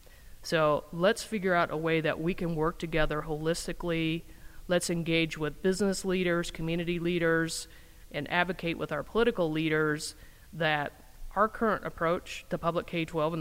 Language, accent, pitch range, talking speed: English, American, 150-175 Hz, 150 wpm